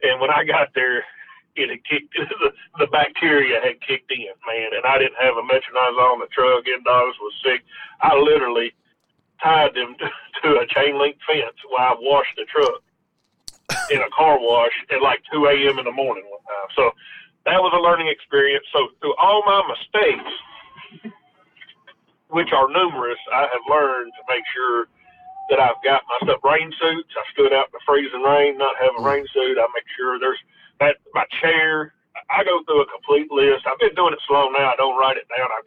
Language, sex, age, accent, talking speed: English, male, 40-59, American, 200 wpm